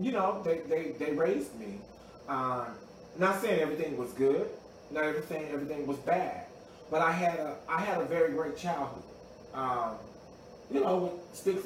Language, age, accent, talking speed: English, 20-39, American, 170 wpm